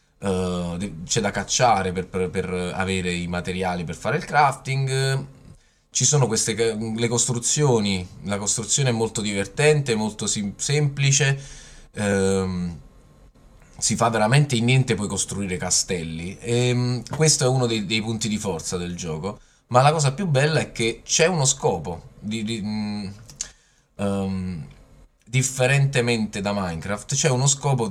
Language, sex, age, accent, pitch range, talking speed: Italian, male, 20-39, native, 95-125 Hz, 145 wpm